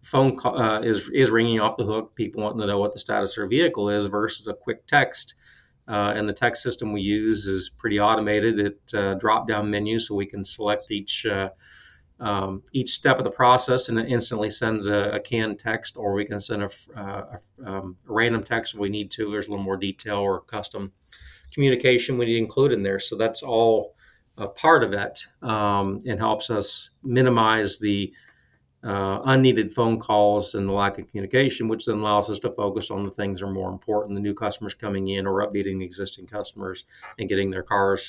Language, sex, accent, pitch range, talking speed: English, male, American, 100-115 Hz, 215 wpm